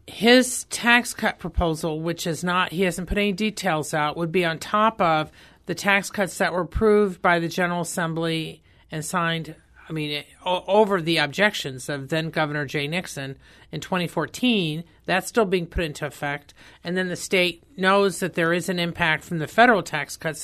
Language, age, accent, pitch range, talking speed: English, 50-69, American, 155-185 Hz, 190 wpm